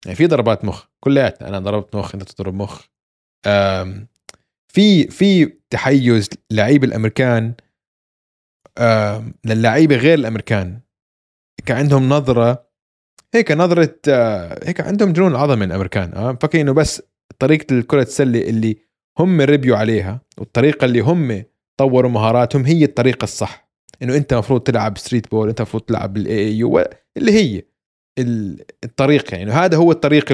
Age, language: 20-39, Arabic